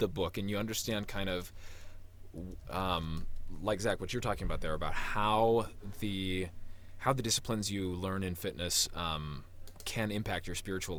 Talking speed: 165 wpm